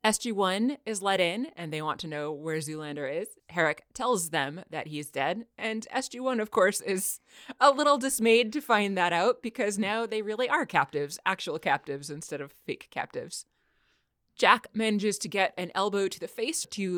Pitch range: 165-230 Hz